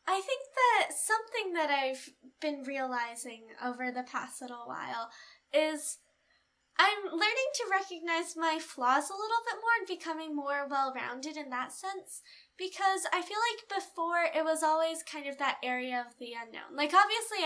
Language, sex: English, female